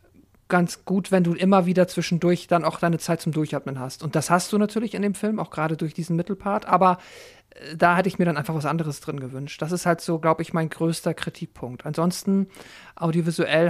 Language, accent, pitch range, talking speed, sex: German, German, 160-185 Hz, 215 wpm, male